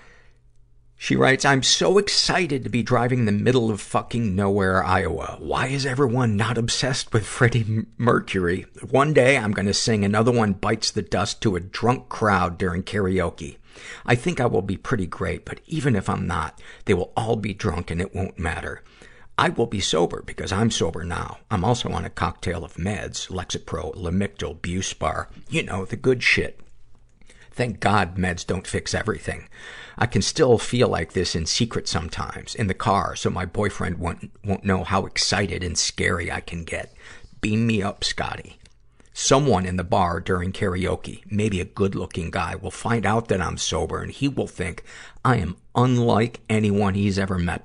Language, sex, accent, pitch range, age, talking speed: English, male, American, 90-115 Hz, 50-69, 180 wpm